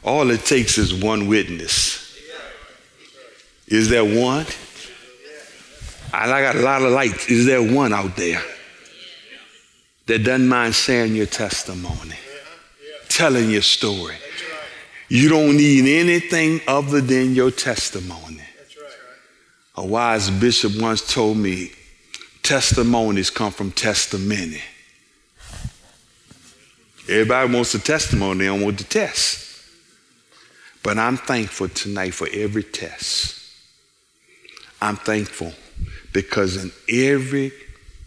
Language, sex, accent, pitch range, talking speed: English, male, American, 100-125 Hz, 105 wpm